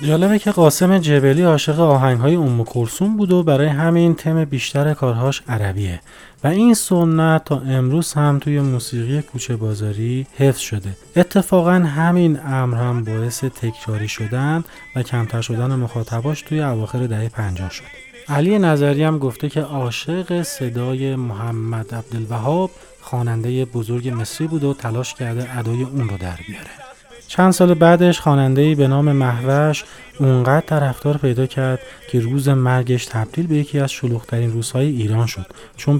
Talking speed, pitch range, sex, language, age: 145 wpm, 115-150 Hz, male, Persian, 30-49